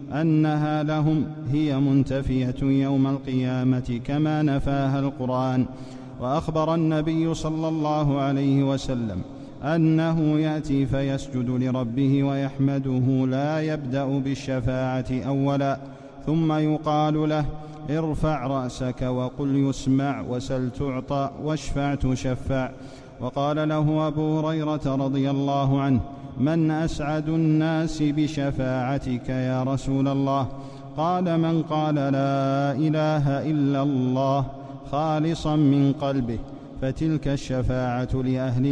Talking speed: 95 wpm